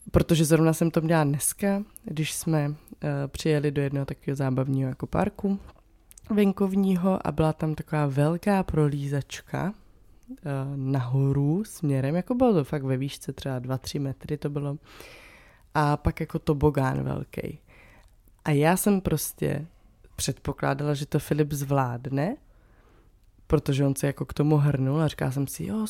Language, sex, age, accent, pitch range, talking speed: Czech, female, 20-39, native, 140-180 Hz, 145 wpm